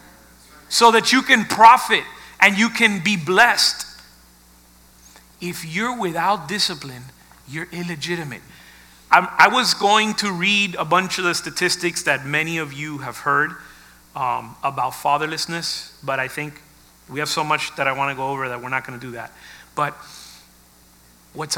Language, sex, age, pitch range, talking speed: Spanish, male, 40-59, 125-195 Hz, 160 wpm